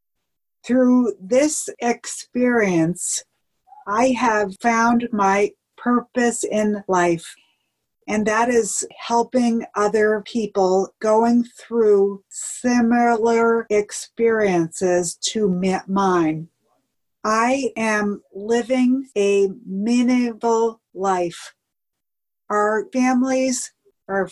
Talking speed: 80 wpm